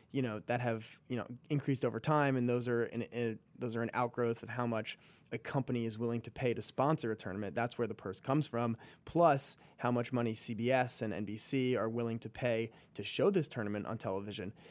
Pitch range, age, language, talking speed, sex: 115-130 Hz, 30-49, English, 220 wpm, male